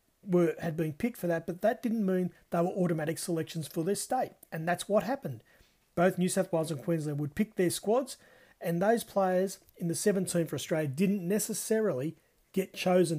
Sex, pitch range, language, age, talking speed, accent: male, 155-195 Hz, English, 40-59, 190 wpm, Australian